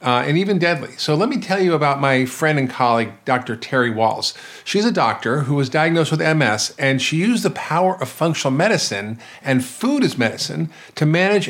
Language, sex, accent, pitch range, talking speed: English, male, American, 130-170 Hz, 205 wpm